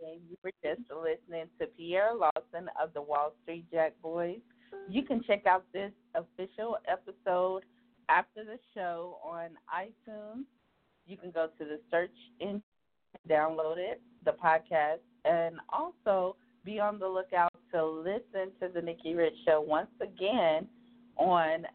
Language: English